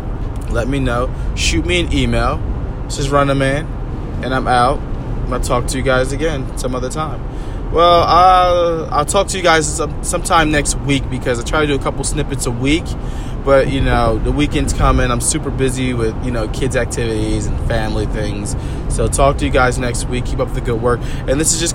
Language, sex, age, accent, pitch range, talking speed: English, male, 20-39, American, 120-150 Hz, 220 wpm